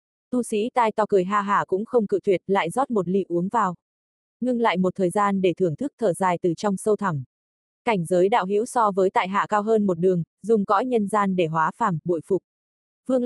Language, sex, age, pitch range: Vietnamese, female, 20-39, 180-220 Hz